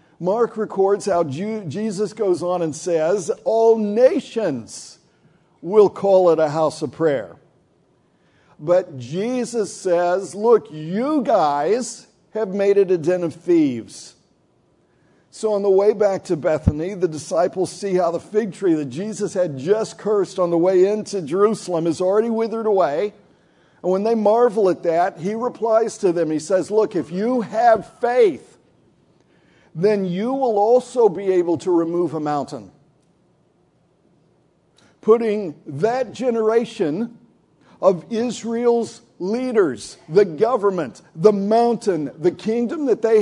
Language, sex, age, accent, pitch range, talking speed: English, male, 50-69, American, 175-225 Hz, 135 wpm